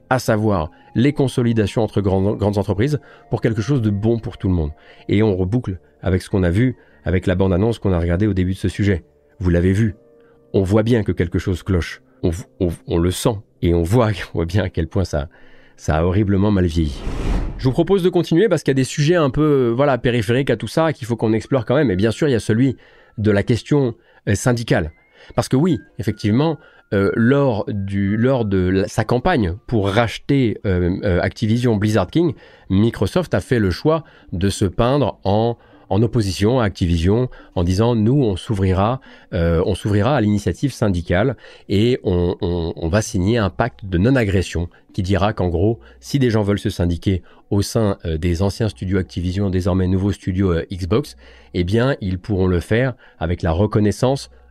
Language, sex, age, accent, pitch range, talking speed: French, male, 40-59, French, 90-120 Hz, 205 wpm